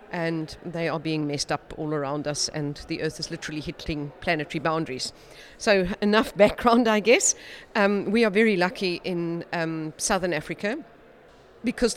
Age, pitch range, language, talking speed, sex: 40-59, 165-200 Hz, Finnish, 160 wpm, female